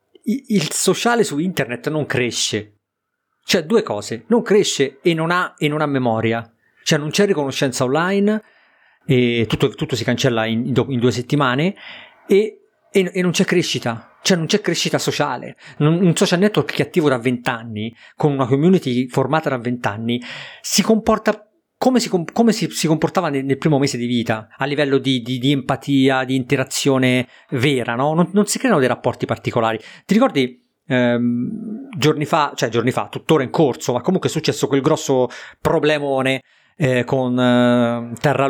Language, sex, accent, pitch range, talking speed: Italian, male, native, 120-160 Hz, 170 wpm